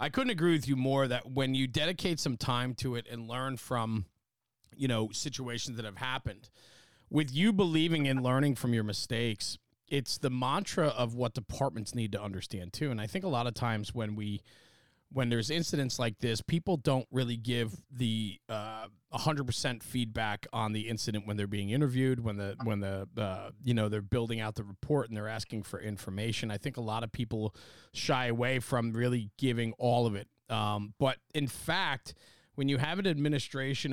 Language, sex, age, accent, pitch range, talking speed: English, male, 30-49, American, 110-140 Hz, 195 wpm